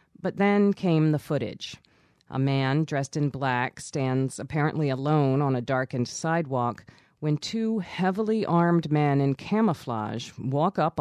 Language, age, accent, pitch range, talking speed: English, 40-59, American, 130-160 Hz, 140 wpm